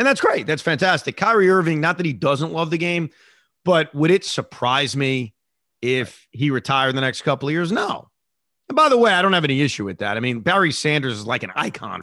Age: 30-49